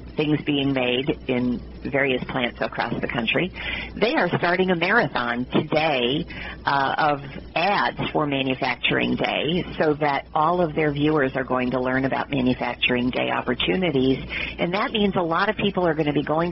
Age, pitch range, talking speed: 50-69, 130-170 Hz, 170 wpm